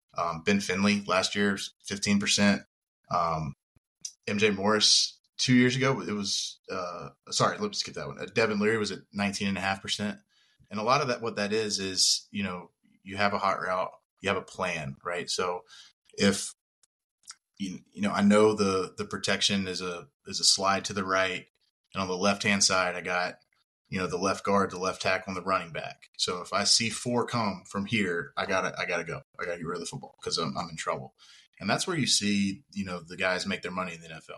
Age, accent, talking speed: 20-39, American, 225 wpm